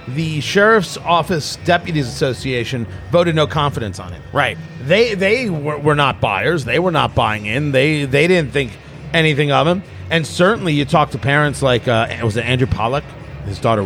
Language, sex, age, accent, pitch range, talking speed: English, male, 40-59, American, 130-175 Hz, 185 wpm